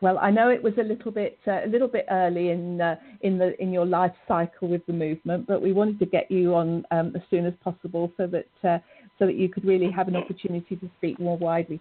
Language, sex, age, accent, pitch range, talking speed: English, female, 50-69, British, 175-215 Hz, 260 wpm